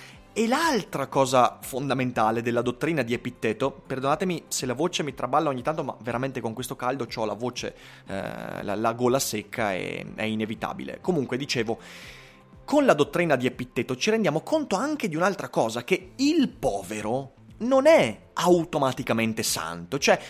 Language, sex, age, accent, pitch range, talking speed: Italian, male, 30-49, native, 115-150 Hz, 160 wpm